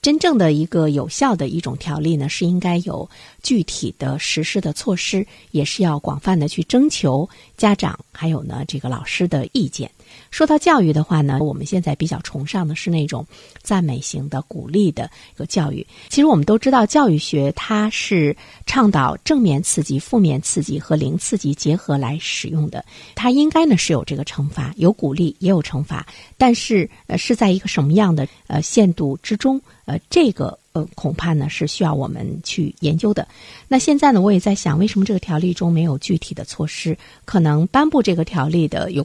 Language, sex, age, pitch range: Chinese, female, 50-69, 150-210 Hz